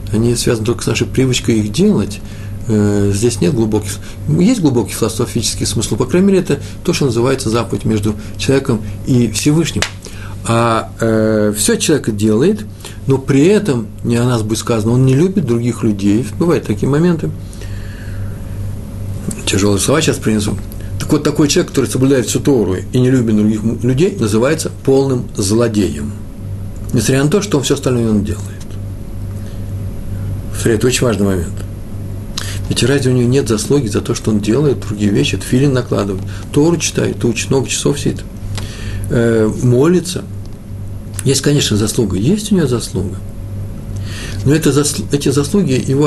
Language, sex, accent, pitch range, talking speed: Russian, male, native, 100-135 Hz, 155 wpm